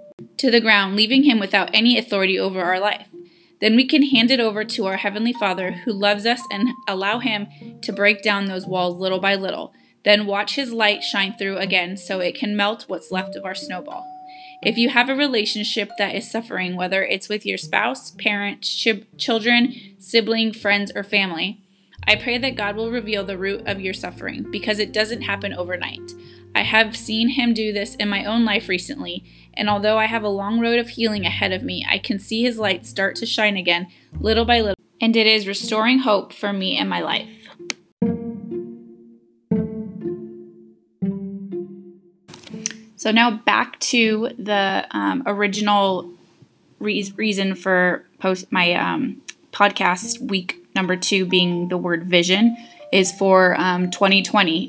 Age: 20-39